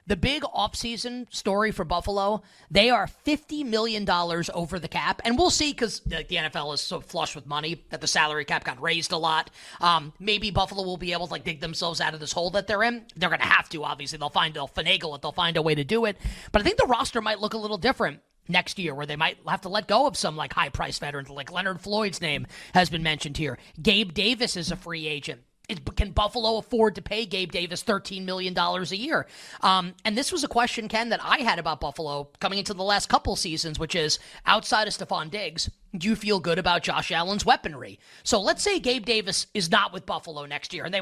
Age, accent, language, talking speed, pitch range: 30-49, American, English, 240 wpm, 160-215 Hz